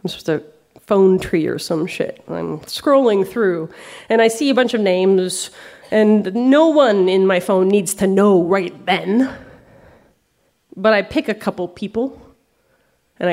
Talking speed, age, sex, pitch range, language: 160 wpm, 30-49, female, 185-245 Hz, English